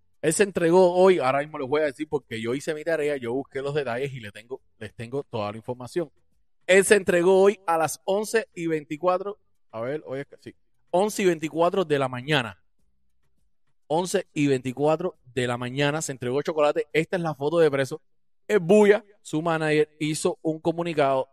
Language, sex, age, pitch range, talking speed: Spanish, male, 30-49, 125-170 Hz, 200 wpm